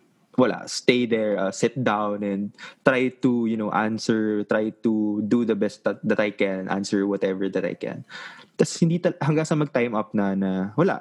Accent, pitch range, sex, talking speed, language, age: Filipino, 105-130 Hz, male, 195 wpm, English, 20-39